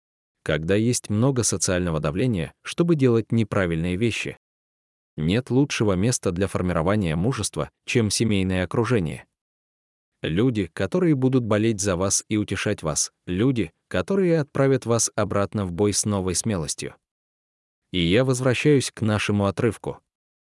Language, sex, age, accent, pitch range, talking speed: Russian, male, 20-39, native, 90-120 Hz, 125 wpm